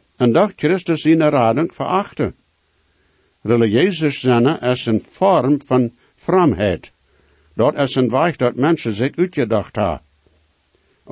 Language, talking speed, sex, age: English, 140 wpm, male, 60-79